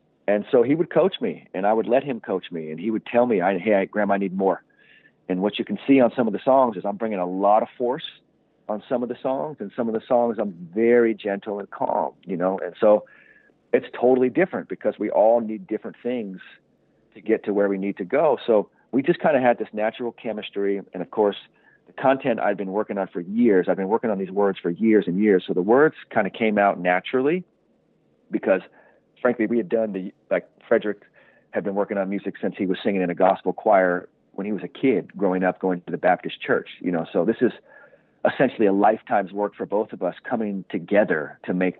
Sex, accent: male, American